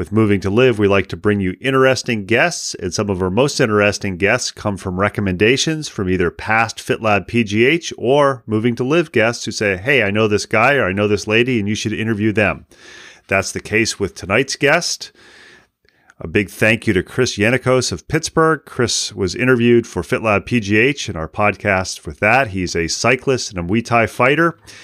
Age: 30-49